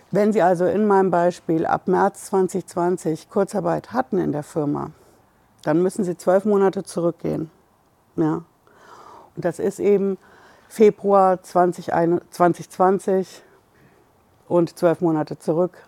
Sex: female